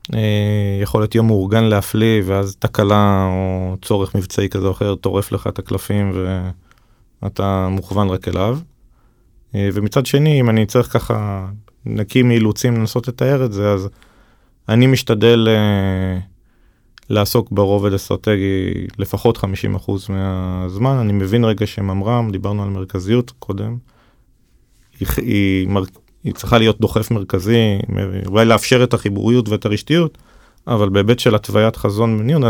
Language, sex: Hebrew, male